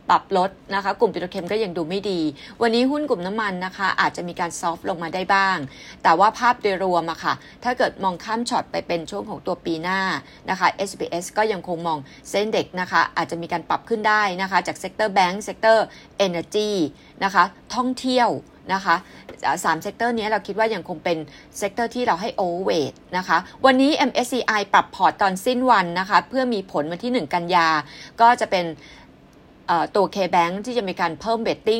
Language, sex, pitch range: Thai, female, 175-225 Hz